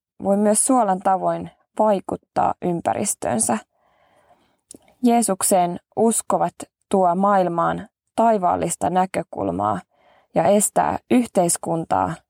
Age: 20-39